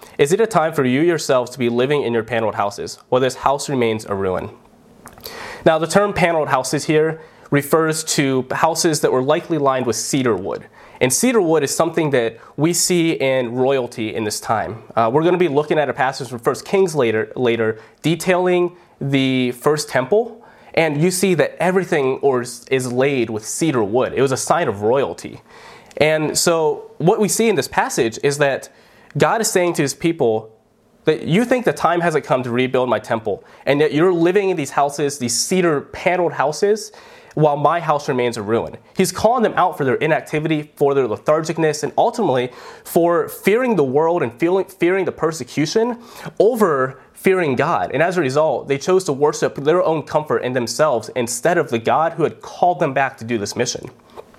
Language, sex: English, male